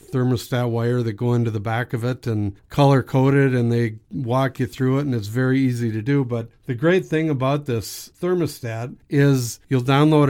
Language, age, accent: English, 50-69, American